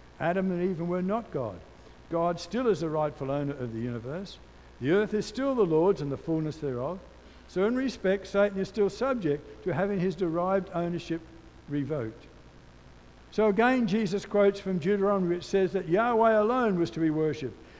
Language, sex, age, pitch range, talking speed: English, male, 60-79, 130-200 Hz, 180 wpm